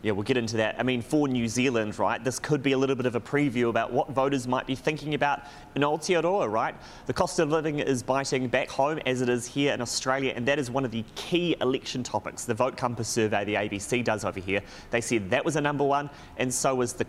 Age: 30-49